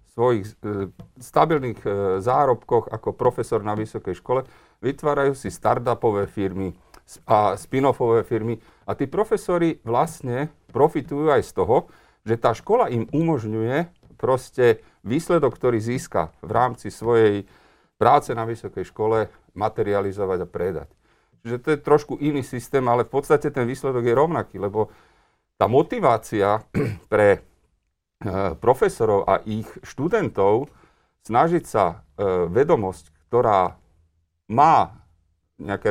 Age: 40-59